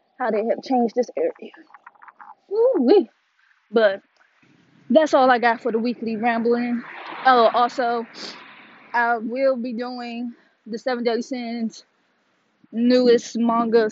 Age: 10-29